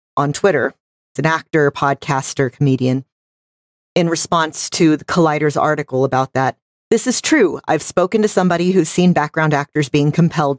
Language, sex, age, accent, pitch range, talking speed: English, female, 40-59, American, 145-190 Hz, 160 wpm